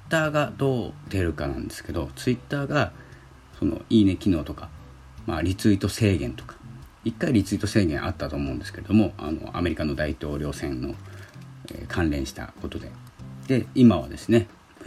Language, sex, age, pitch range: Japanese, male, 40-59, 75-110 Hz